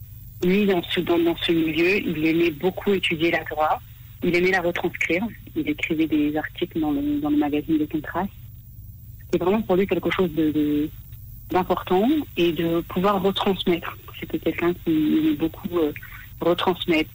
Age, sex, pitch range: 40-59, female, 125-175 Hz